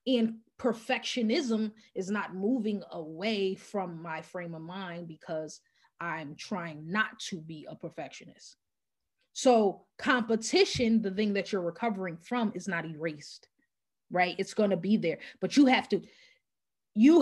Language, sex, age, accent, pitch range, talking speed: English, female, 20-39, American, 190-235 Hz, 140 wpm